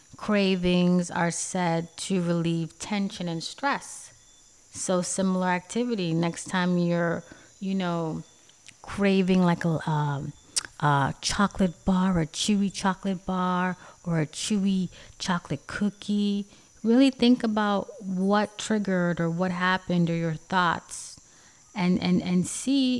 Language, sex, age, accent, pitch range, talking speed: English, female, 30-49, American, 165-190 Hz, 125 wpm